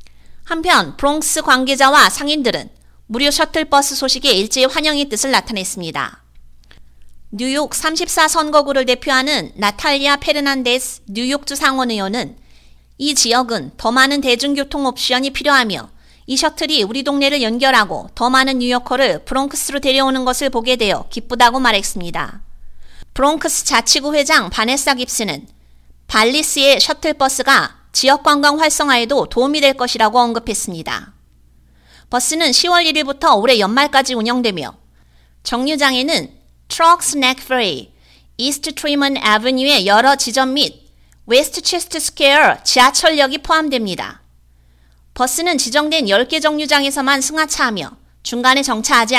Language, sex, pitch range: Korean, female, 225-295 Hz